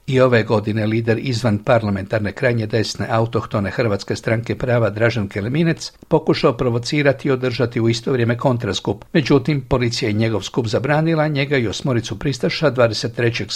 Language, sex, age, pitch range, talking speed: Croatian, male, 60-79, 115-145 Hz, 145 wpm